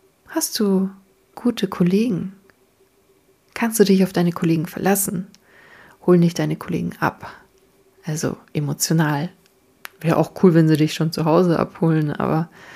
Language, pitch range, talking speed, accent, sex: German, 170-205 Hz, 135 wpm, German, female